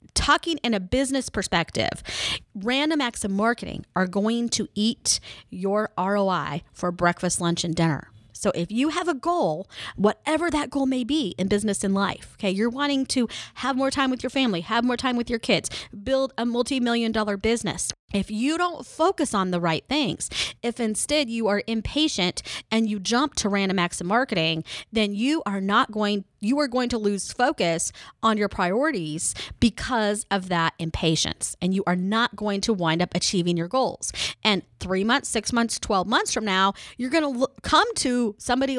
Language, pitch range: English, 200-280 Hz